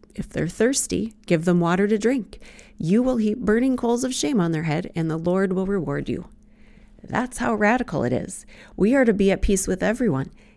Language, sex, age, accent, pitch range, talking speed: English, female, 40-59, American, 210-255 Hz, 210 wpm